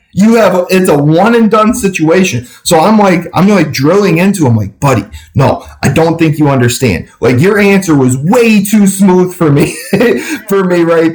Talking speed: 195 wpm